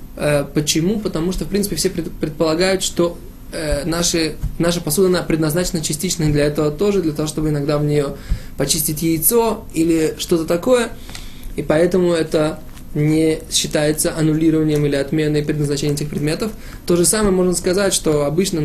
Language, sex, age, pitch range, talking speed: Russian, male, 20-39, 150-175 Hz, 145 wpm